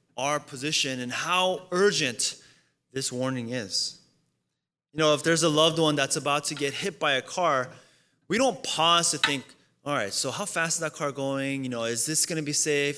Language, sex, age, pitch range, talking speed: English, male, 20-39, 120-170 Hz, 210 wpm